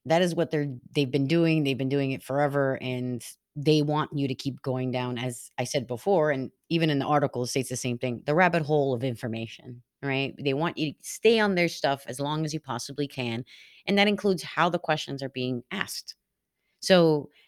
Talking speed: 220 wpm